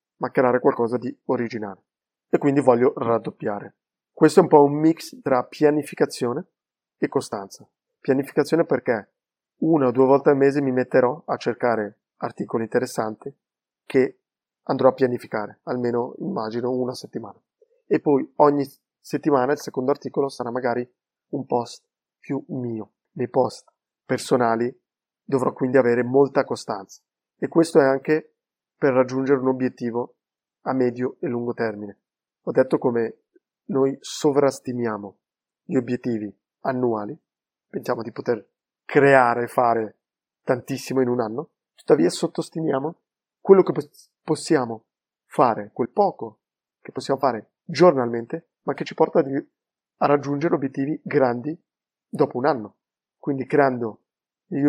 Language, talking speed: Italian, 130 wpm